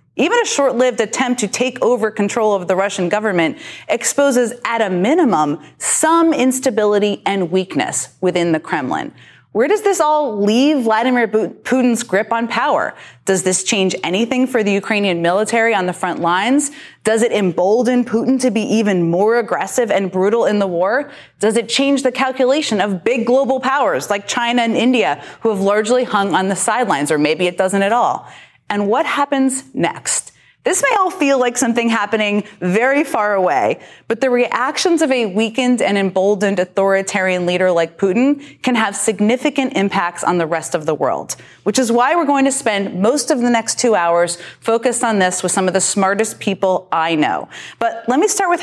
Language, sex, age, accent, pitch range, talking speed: English, female, 20-39, American, 190-255 Hz, 185 wpm